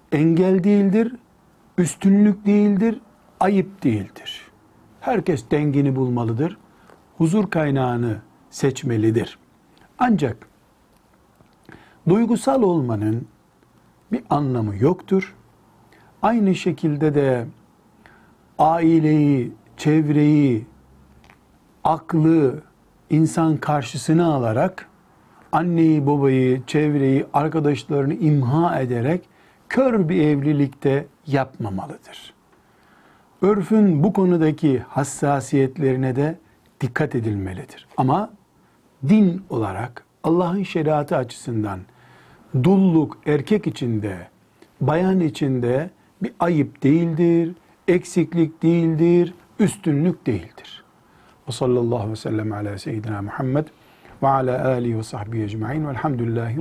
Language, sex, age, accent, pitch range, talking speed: Turkish, male, 60-79, native, 120-170 Hz, 75 wpm